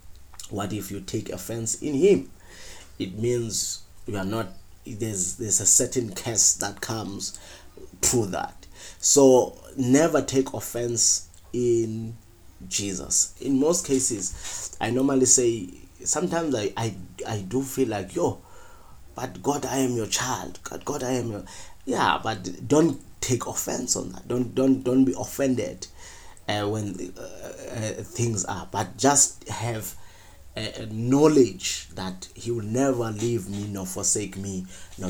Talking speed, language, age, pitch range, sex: 145 wpm, English, 30-49, 95-120 Hz, male